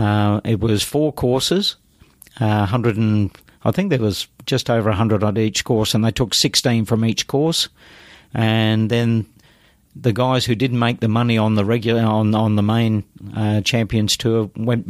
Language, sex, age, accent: English, male, 50-69, Australian